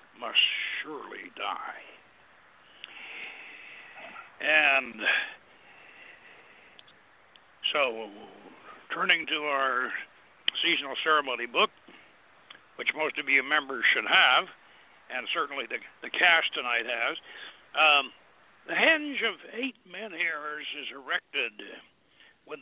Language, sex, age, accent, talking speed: English, male, 60-79, American, 95 wpm